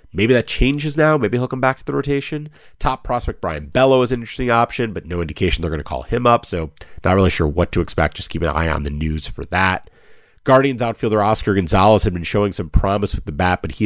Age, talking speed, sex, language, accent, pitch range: 30-49, 250 wpm, male, English, American, 85-115 Hz